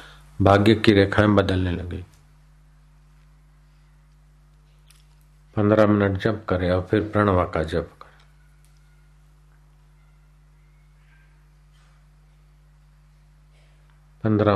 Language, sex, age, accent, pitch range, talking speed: Hindi, male, 50-69, native, 105-150 Hz, 65 wpm